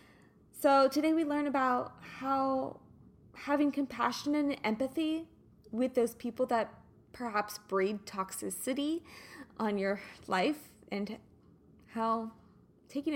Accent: American